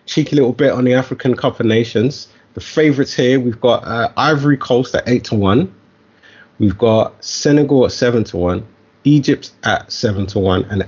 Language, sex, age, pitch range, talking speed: English, male, 20-39, 105-135 Hz, 155 wpm